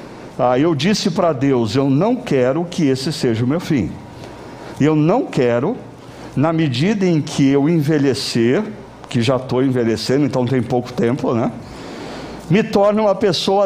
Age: 60-79